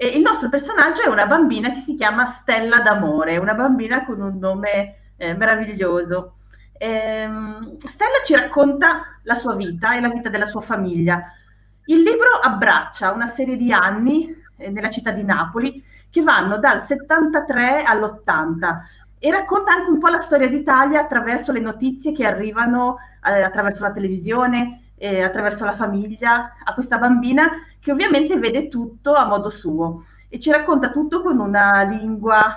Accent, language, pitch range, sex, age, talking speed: native, Italian, 205-275 Hz, female, 30-49, 150 wpm